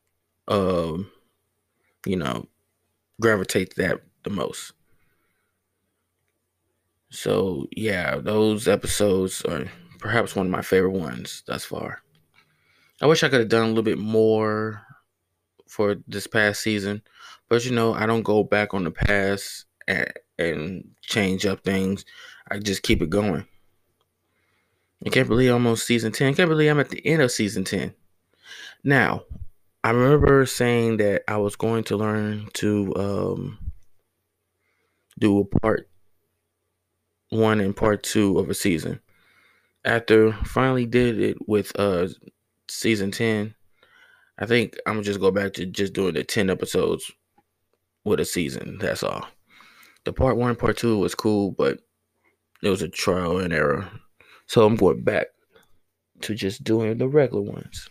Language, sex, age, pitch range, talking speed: English, male, 20-39, 95-115 Hz, 150 wpm